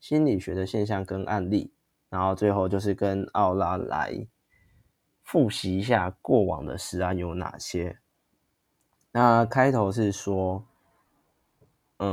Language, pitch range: Chinese, 90-110 Hz